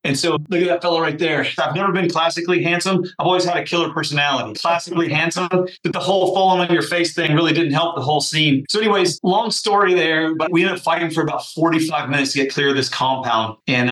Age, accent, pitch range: 30-49, American, 125-160 Hz